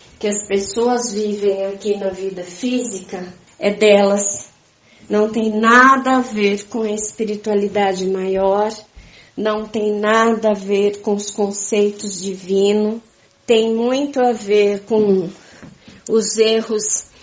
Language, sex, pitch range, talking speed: Portuguese, female, 200-225 Hz, 120 wpm